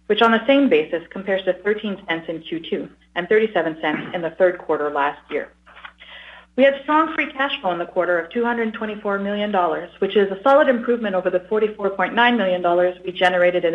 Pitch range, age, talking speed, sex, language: 175-220 Hz, 40-59, 185 wpm, female, English